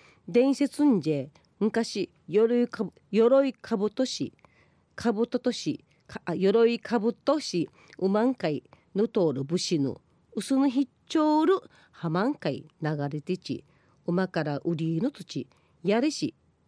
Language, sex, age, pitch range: Japanese, female, 40-59, 160-270 Hz